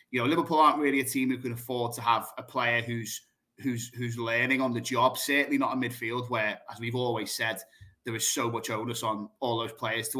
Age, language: 30-49, English